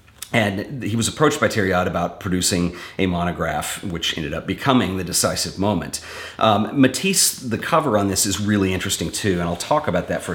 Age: 40-59